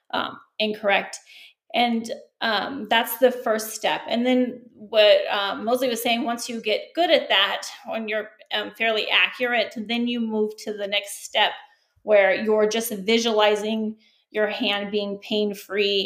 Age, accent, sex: 30-49, American, female